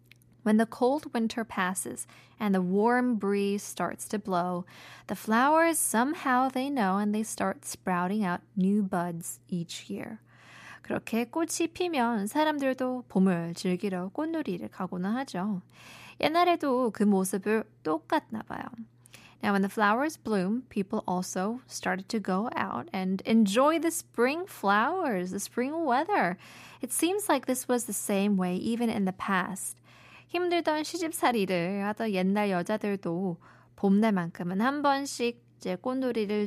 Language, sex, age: Korean, female, 20-39